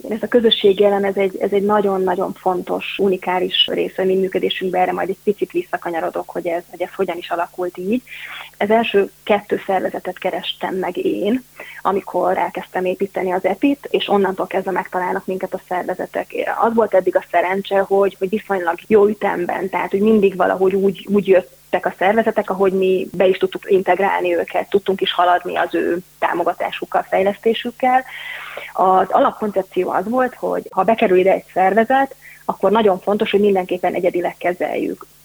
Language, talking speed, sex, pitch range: Hungarian, 165 wpm, female, 185-210 Hz